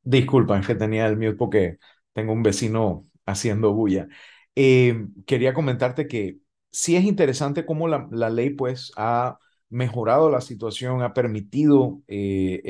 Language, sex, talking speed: Spanish, male, 140 wpm